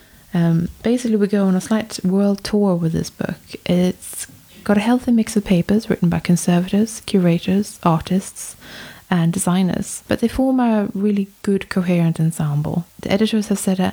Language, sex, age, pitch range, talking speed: English, female, 20-39, 170-210 Hz, 165 wpm